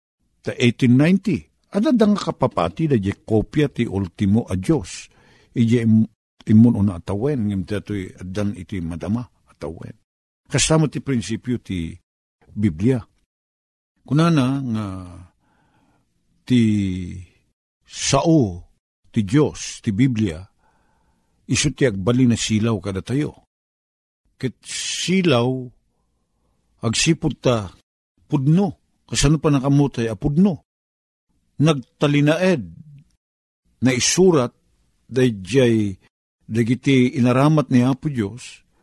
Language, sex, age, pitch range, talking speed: Filipino, male, 50-69, 100-140 Hz, 90 wpm